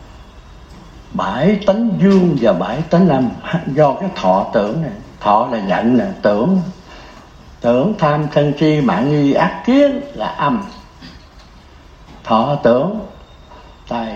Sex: male